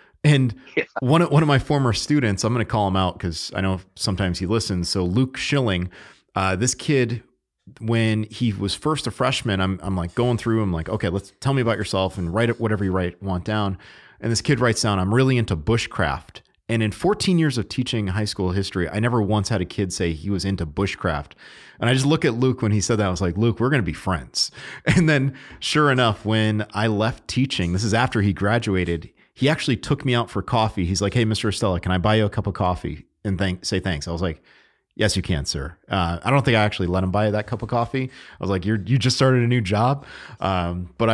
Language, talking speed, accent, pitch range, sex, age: English, 245 wpm, American, 95-120 Hz, male, 30-49